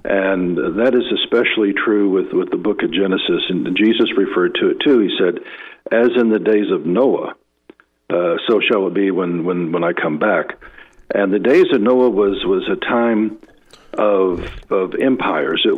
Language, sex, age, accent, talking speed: English, male, 60-79, American, 185 wpm